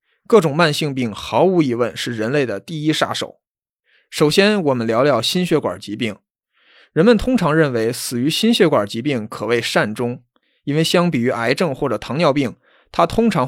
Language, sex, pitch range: Chinese, male, 130-175 Hz